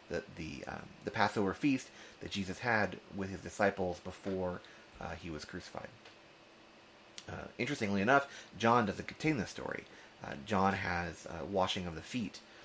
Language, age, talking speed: English, 30-49, 150 wpm